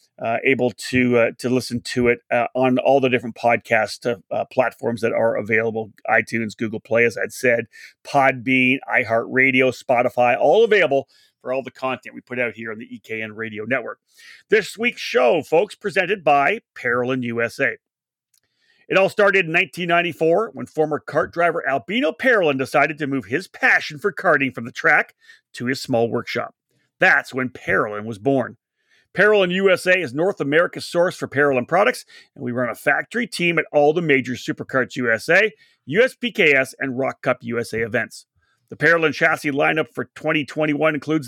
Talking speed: 170 wpm